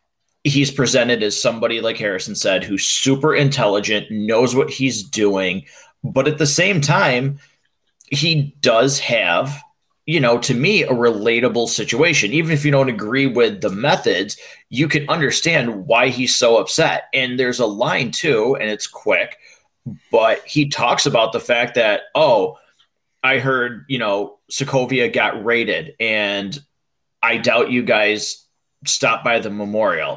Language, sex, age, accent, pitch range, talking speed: English, male, 30-49, American, 110-140 Hz, 150 wpm